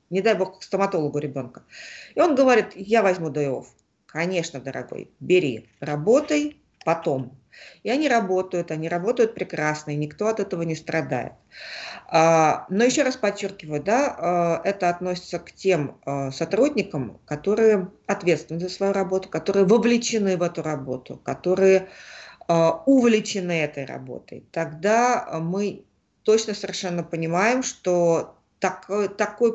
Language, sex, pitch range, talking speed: Russian, female, 160-200 Hz, 120 wpm